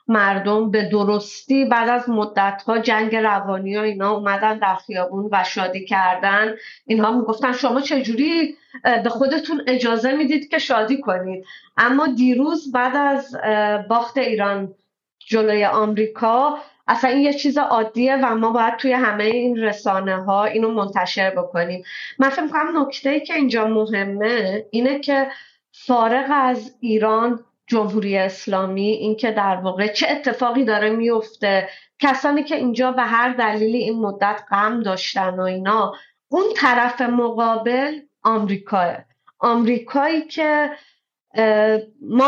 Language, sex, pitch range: Persian, female, 215-265 Hz